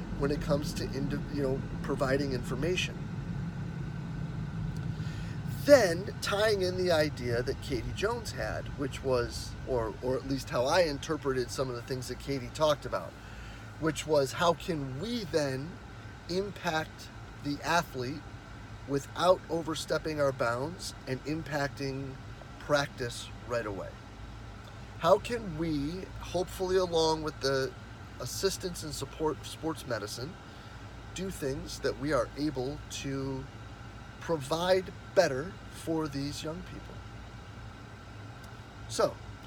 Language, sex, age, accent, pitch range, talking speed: English, male, 30-49, American, 110-155 Hz, 120 wpm